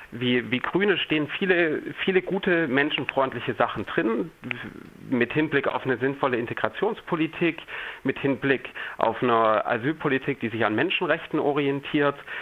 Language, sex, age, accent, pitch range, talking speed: German, male, 40-59, German, 125-155 Hz, 125 wpm